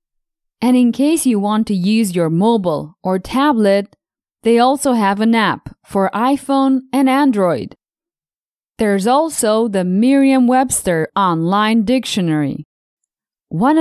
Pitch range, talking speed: 195-265 Hz, 115 wpm